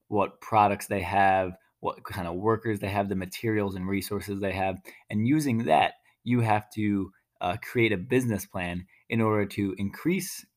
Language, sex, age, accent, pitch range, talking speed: English, male, 20-39, American, 95-110 Hz, 175 wpm